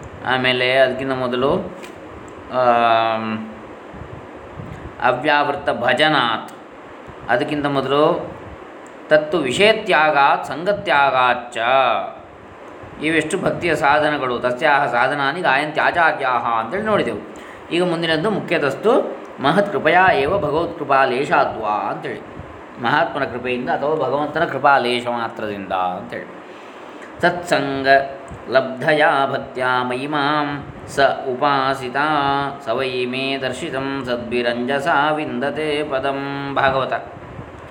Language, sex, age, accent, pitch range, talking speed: Kannada, male, 20-39, native, 125-155 Hz, 55 wpm